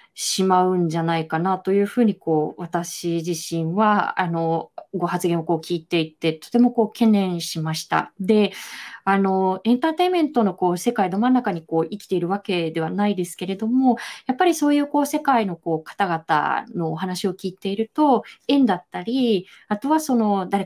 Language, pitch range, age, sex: Japanese, 175-250 Hz, 20-39, female